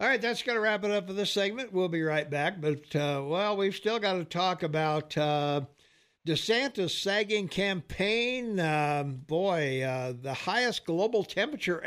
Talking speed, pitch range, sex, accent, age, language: 175 wpm, 145-195 Hz, male, American, 60-79, English